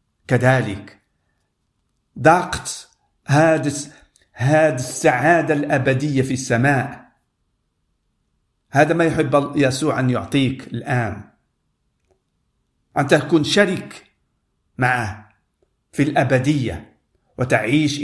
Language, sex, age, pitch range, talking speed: Arabic, male, 50-69, 110-155 Hz, 70 wpm